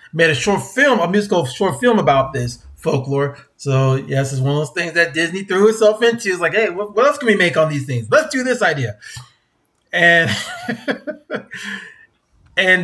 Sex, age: male, 30-49